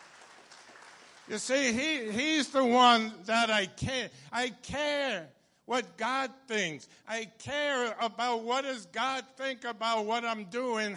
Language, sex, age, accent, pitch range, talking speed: English, male, 60-79, American, 200-235 Hz, 130 wpm